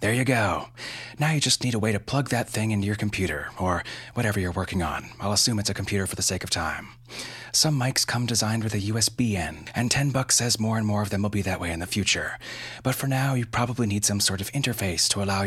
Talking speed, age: 260 wpm, 30-49